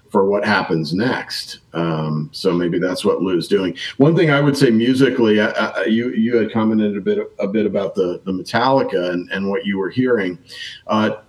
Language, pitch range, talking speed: English, 95-115 Hz, 200 wpm